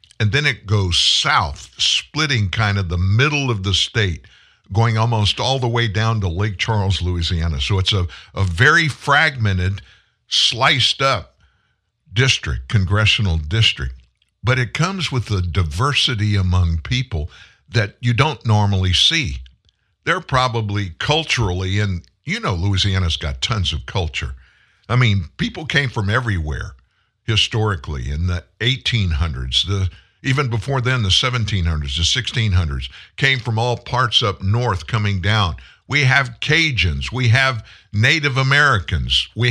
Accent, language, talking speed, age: American, English, 140 wpm, 60-79